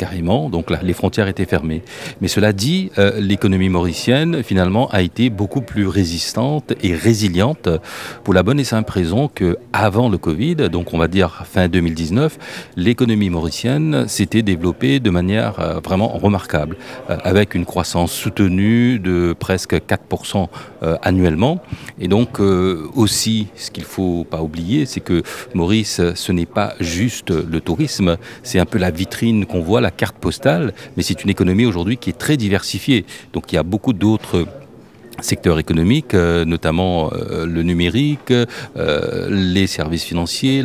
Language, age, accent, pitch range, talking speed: French, 40-59, French, 85-115 Hz, 150 wpm